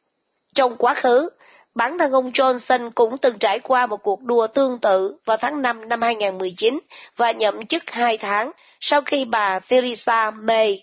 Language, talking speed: Vietnamese, 170 wpm